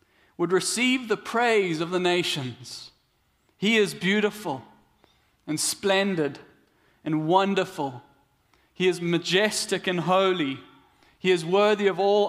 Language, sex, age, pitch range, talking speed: English, male, 30-49, 150-195 Hz, 115 wpm